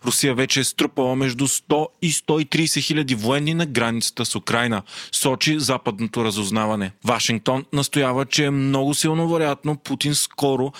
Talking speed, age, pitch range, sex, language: 140 wpm, 30-49, 120-150 Hz, male, Bulgarian